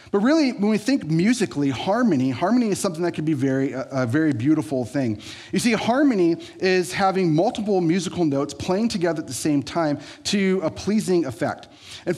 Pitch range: 140-195 Hz